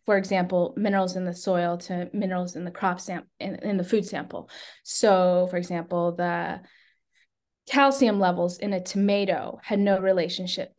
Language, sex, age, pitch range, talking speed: English, female, 20-39, 180-230 Hz, 160 wpm